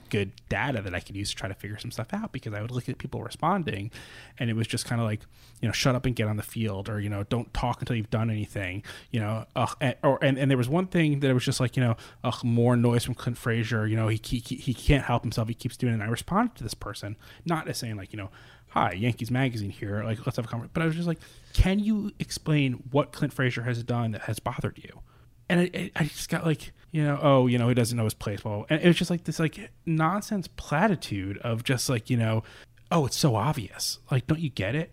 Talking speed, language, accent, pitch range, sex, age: 270 wpm, English, American, 110-140 Hz, male, 20-39